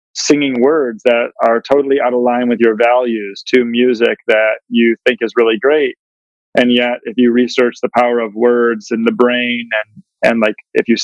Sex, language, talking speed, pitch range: male, English, 195 wpm, 115-130 Hz